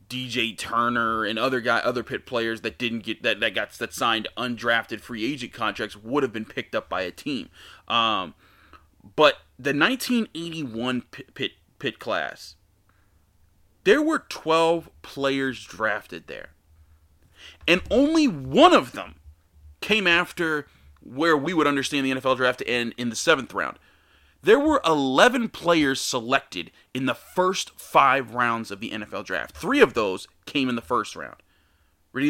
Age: 30-49